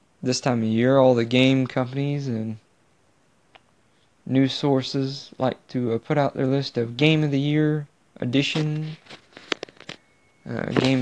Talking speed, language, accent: 140 wpm, English, American